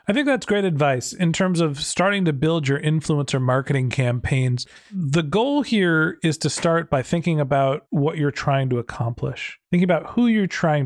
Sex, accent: male, American